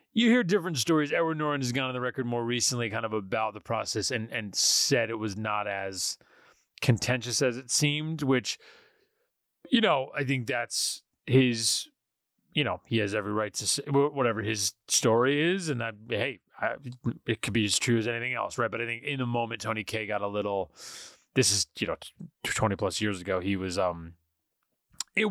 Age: 30-49